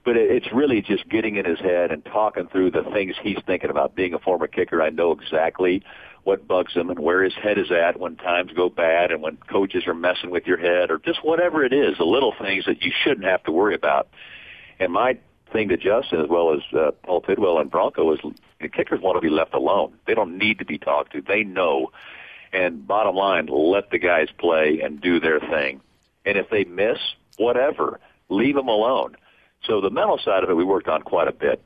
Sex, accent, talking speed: male, American, 225 wpm